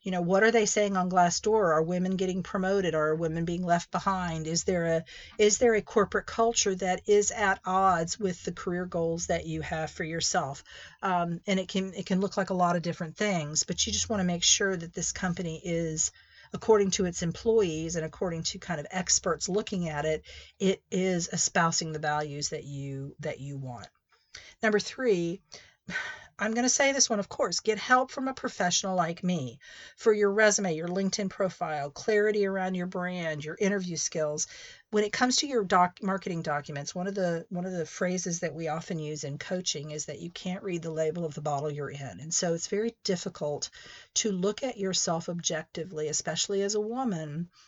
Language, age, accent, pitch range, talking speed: English, 50-69, American, 165-200 Hz, 200 wpm